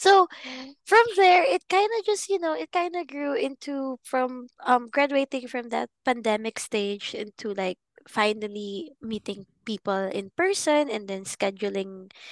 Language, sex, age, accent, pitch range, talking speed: Filipino, female, 20-39, native, 210-280 Hz, 150 wpm